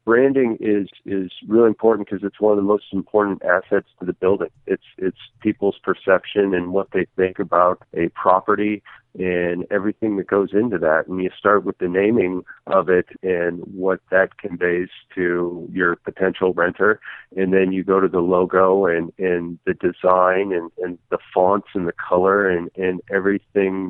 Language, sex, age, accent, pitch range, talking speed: English, male, 40-59, American, 90-100 Hz, 175 wpm